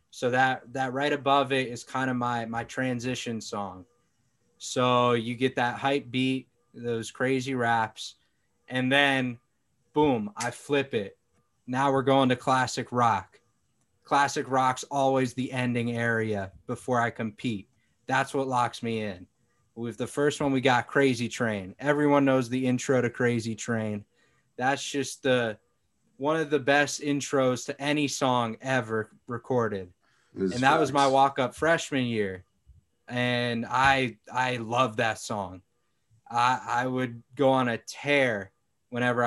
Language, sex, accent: English, male, American